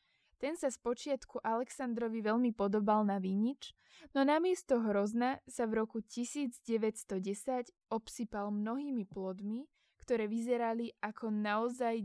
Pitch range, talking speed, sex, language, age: 215-255 Hz, 115 wpm, female, Slovak, 20-39